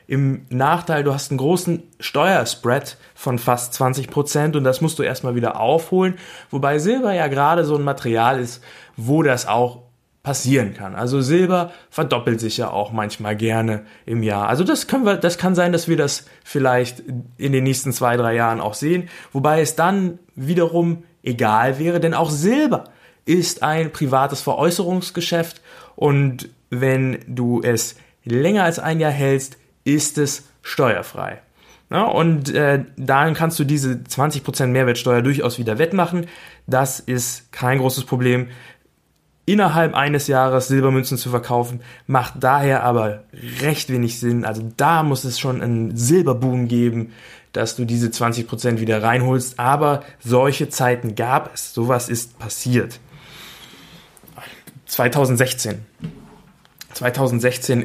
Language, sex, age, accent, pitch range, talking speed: German, male, 20-39, German, 120-150 Hz, 140 wpm